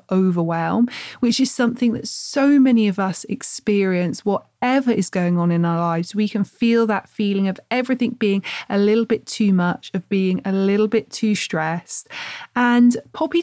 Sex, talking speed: female, 175 wpm